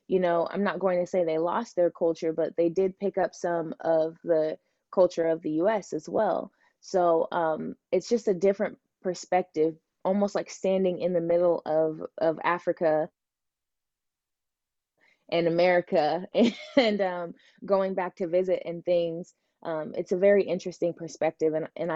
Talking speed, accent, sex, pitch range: 165 wpm, American, female, 165-195 Hz